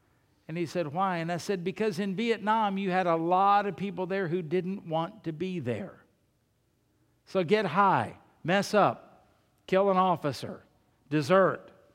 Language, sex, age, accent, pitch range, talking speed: English, male, 60-79, American, 150-195 Hz, 160 wpm